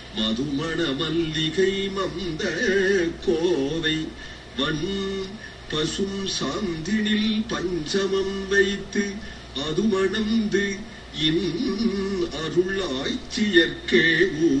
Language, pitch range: Tamil, 140-195 Hz